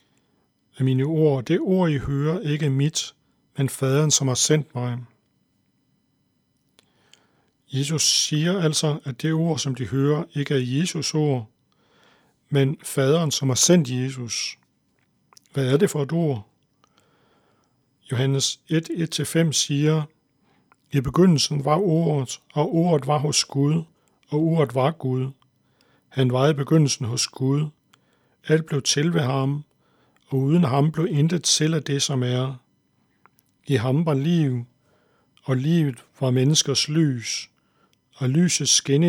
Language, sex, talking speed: Danish, male, 135 wpm